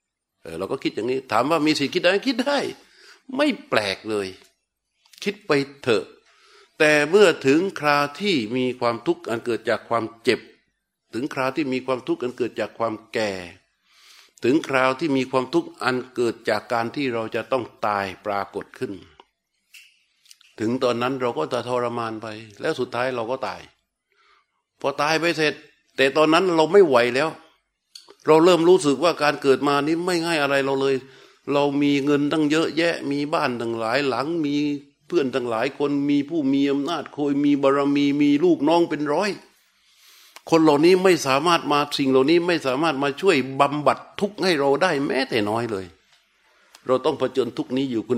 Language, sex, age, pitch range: Thai, male, 60-79, 130-170 Hz